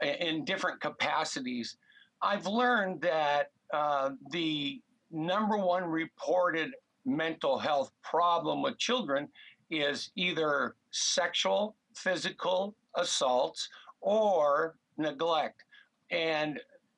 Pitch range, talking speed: 155-200 Hz, 85 wpm